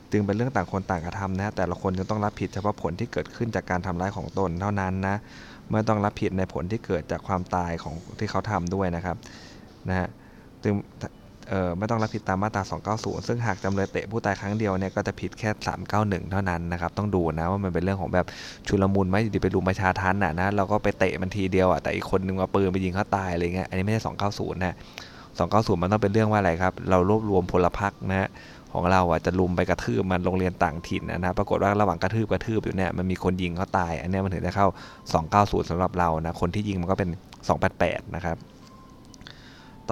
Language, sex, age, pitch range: Thai, male, 20-39, 90-105 Hz